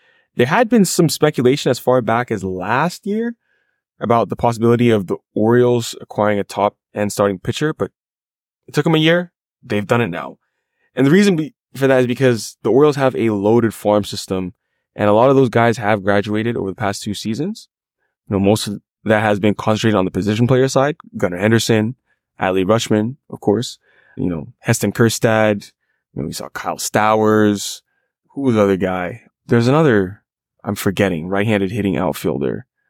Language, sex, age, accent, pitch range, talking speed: English, male, 20-39, American, 100-130 Hz, 185 wpm